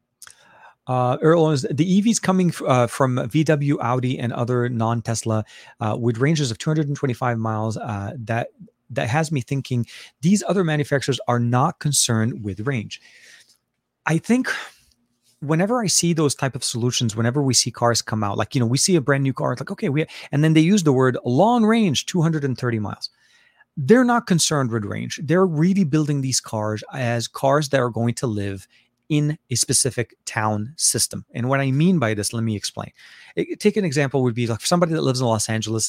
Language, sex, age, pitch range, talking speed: English, male, 30-49, 115-150 Hz, 195 wpm